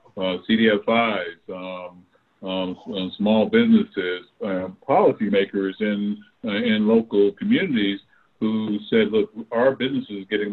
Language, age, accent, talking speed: English, 60-79, American, 115 wpm